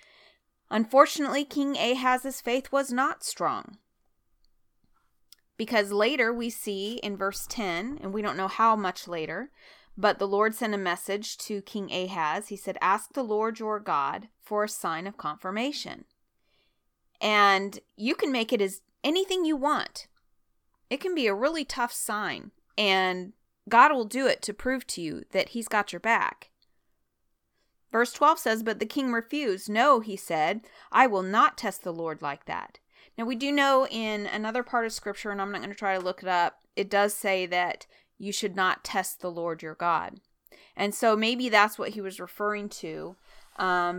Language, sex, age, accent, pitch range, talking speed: English, female, 30-49, American, 190-245 Hz, 180 wpm